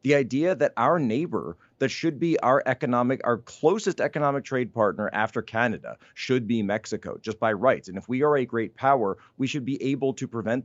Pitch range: 105-135 Hz